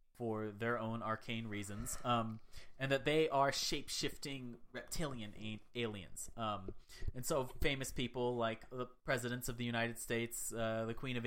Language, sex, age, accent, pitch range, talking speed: English, male, 30-49, American, 110-155 Hz, 155 wpm